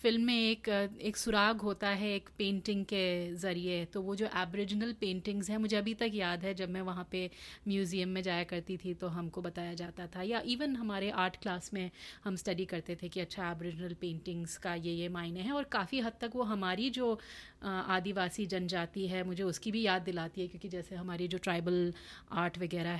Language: Hindi